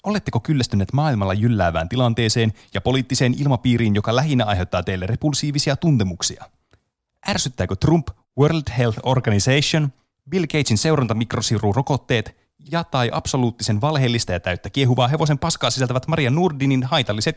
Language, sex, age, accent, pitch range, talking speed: Finnish, male, 30-49, native, 110-150 Hz, 130 wpm